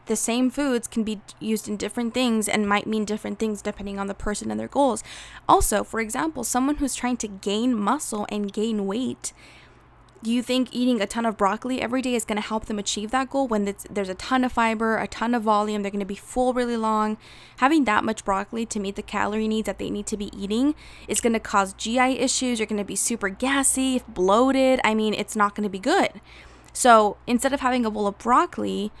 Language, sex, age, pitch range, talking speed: English, female, 20-39, 210-245 Hz, 235 wpm